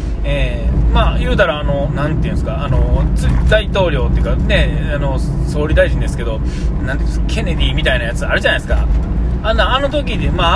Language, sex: Japanese, male